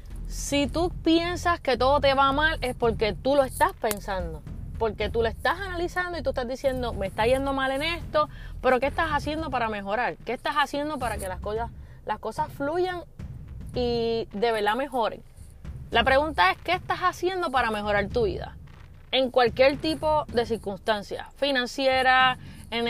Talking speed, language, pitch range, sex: 175 wpm, Spanish, 215-290 Hz, female